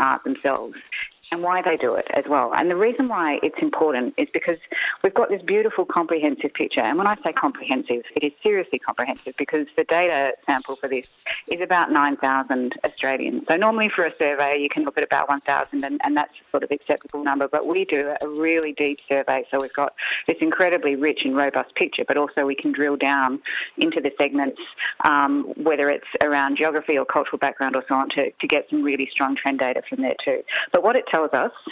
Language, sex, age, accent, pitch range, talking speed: English, female, 40-59, Australian, 145-175 Hz, 215 wpm